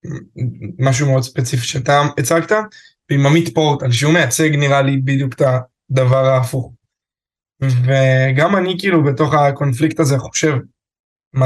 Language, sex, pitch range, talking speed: Hebrew, male, 130-160 Hz, 125 wpm